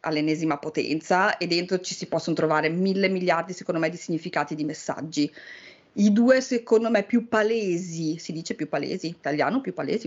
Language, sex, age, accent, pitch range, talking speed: Italian, female, 30-49, native, 170-205 Hz, 175 wpm